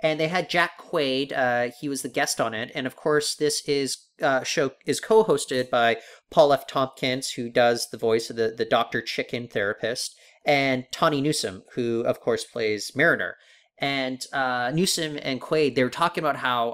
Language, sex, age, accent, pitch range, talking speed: English, male, 30-49, American, 130-175 Hz, 190 wpm